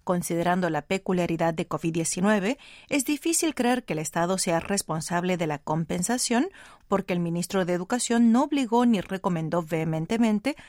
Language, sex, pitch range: Spanish, female, 165-220 Hz